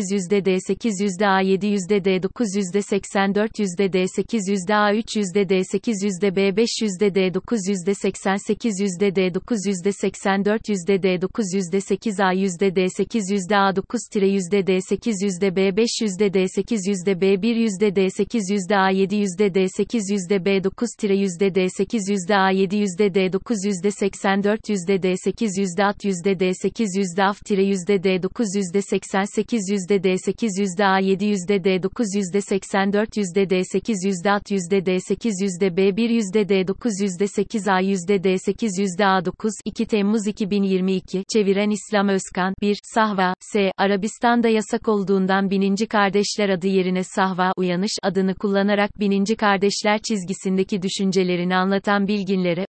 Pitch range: 195-210 Hz